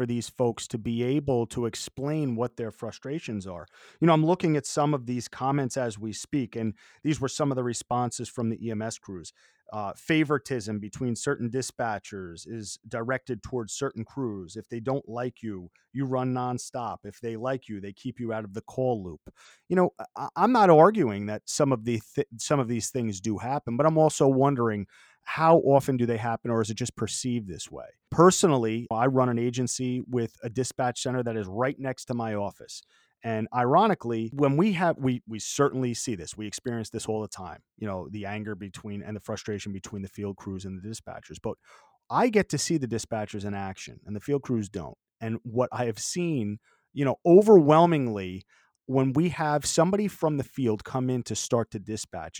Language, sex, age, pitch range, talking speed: English, male, 30-49, 110-135 Hz, 205 wpm